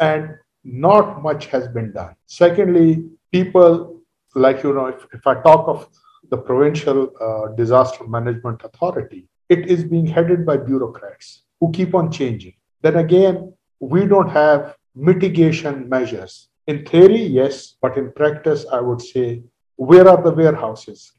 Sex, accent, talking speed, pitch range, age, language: male, Indian, 145 wpm, 130-170 Hz, 50-69, English